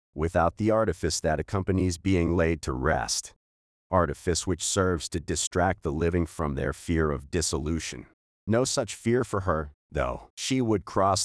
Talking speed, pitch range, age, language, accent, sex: 160 wpm, 80-95 Hz, 40-59, English, American, male